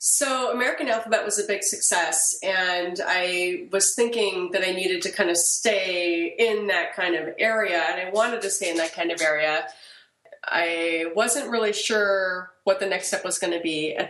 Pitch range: 160-200 Hz